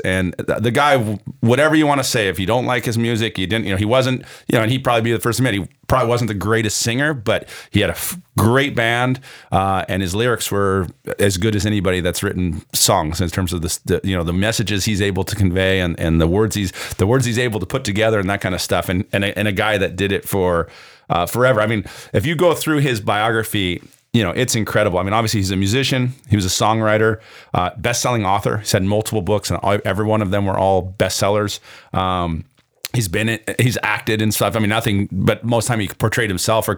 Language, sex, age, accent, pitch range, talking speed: English, male, 40-59, American, 95-115 Hz, 250 wpm